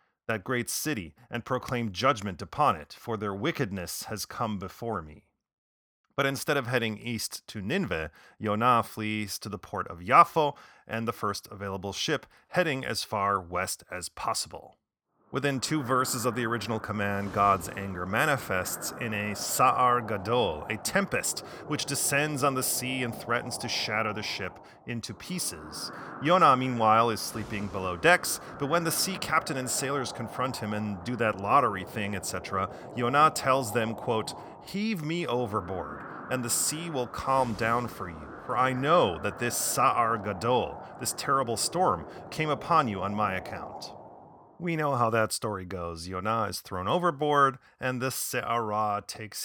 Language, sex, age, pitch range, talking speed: English, male, 30-49, 100-130 Hz, 165 wpm